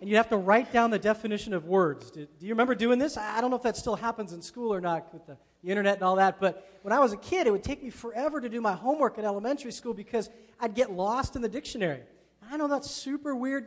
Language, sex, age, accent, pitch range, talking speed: English, male, 40-59, American, 190-240 Hz, 280 wpm